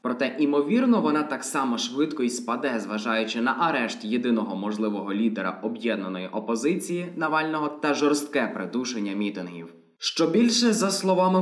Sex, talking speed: male, 130 wpm